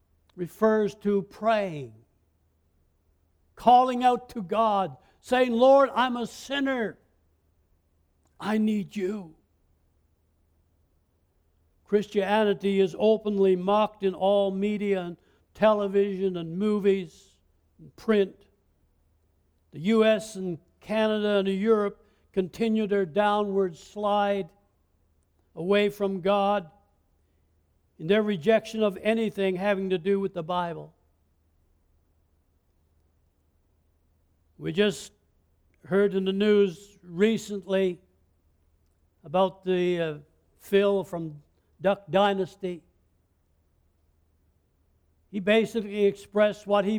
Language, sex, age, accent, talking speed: English, male, 60-79, American, 90 wpm